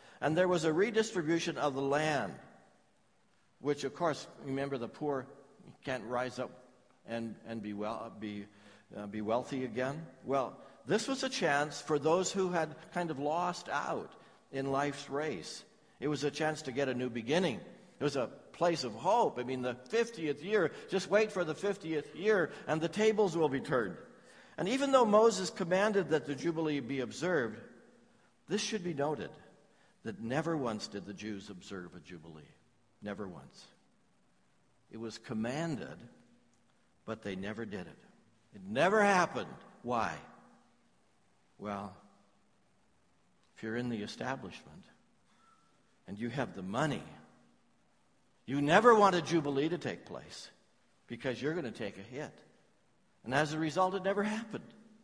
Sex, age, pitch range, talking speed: male, 60-79, 120-180 Hz, 155 wpm